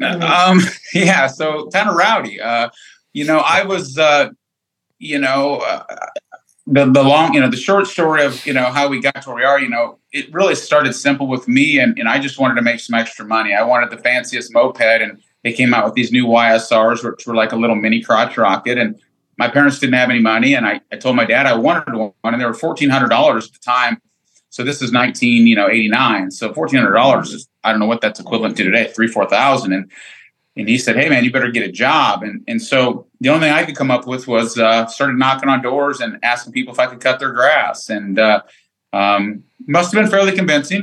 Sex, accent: male, American